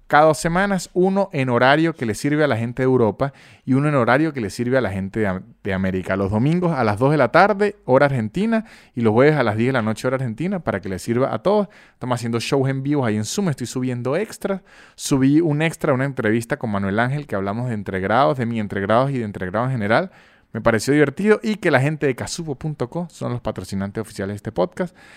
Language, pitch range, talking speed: Spanish, 110-150 Hz, 240 wpm